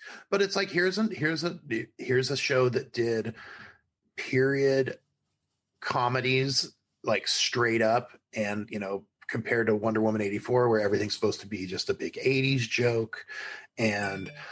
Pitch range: 115-145 Hz